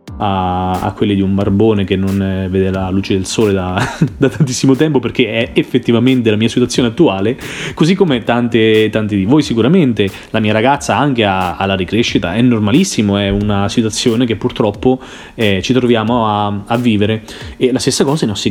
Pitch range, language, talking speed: 105-135 Hz, Italian, 185 wpm